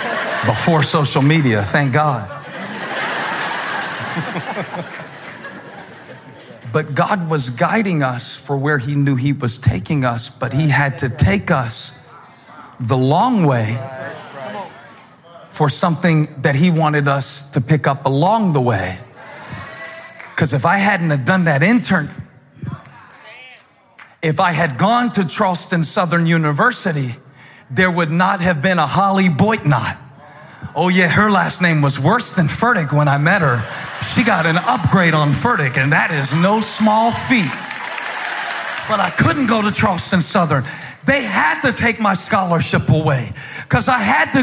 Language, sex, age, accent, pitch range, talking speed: English, male, 40-59, American, 145-215 Hz, 145 wpm